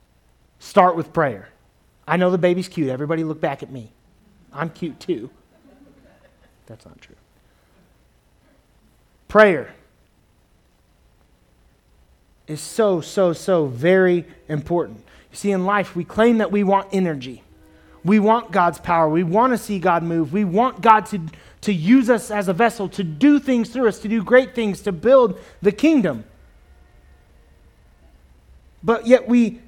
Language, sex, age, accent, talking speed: English, male, 30-49, American, 145 wpm